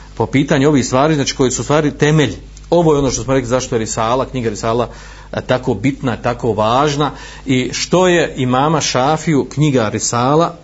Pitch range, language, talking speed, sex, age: 115-145 Hz, Croatian, 175 wpm, male, 40-59